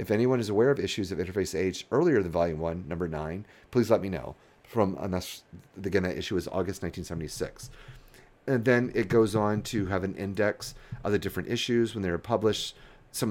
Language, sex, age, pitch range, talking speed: English, male, 40-59, 95-125 Hz, 205 wpm